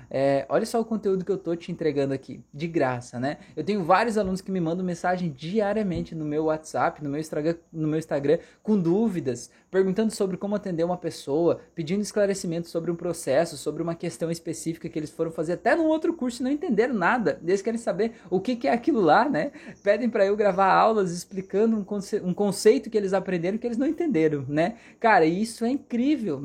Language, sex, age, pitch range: Portuguese, male, 20-39, 160-225 Hz